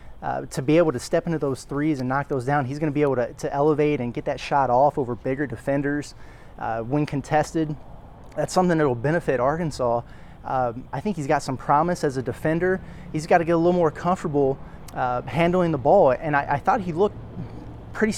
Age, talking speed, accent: 20-39, 220 wpm, American